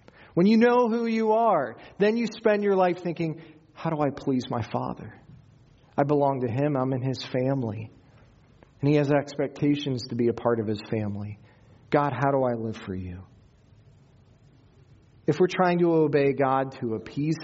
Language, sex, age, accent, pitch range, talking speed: English, male, 40-59, American, 115-150 Hz, 180 wpm